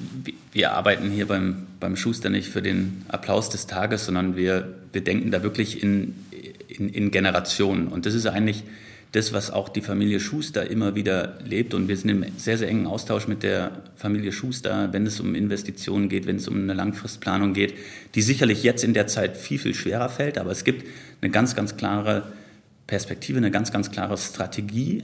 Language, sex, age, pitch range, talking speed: German, male, 30-49, 100-110 Hz, 195 wpm